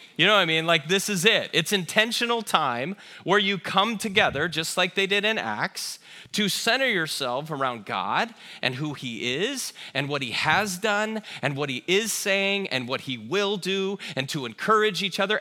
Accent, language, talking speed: American, English, 200 wpm